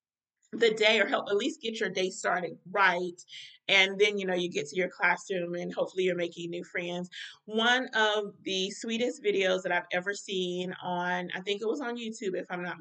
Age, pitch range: 30-49, 180-215 Hz